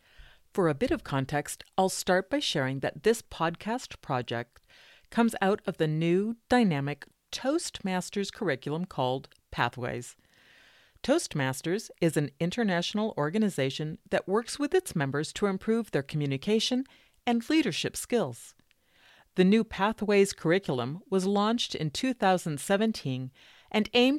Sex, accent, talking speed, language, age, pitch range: female, American, 125 wpm, English, 50-69, 150-230 Hz